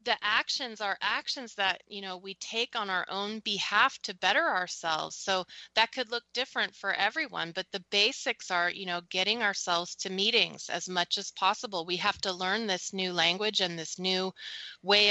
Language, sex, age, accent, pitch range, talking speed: English, female, 30-49, American, 180-205 Hz, 190 wpm